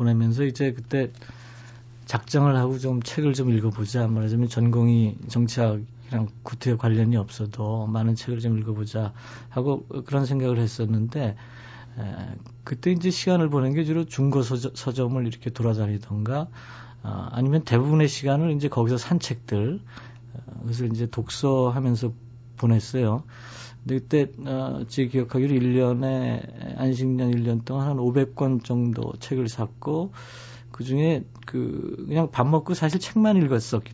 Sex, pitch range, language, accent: male, 115-135 Hz, Korean, native